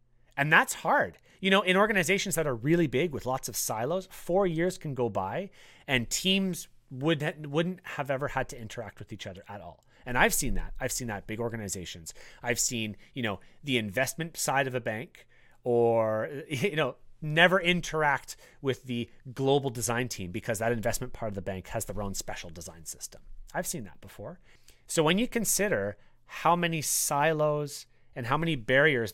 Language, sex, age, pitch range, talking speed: English, male, 30-49, 115-160 Hz, 185 wpm